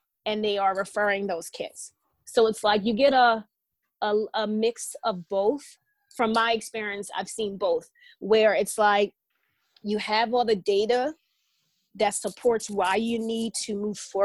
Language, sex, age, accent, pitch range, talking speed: English, female, 20-39, American, 205-250 Hz, 155 wpm